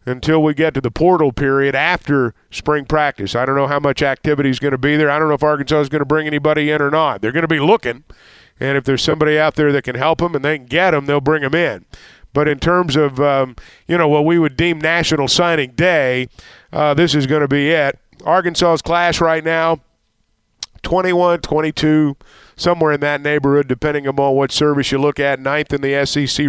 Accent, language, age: American, English, 50-69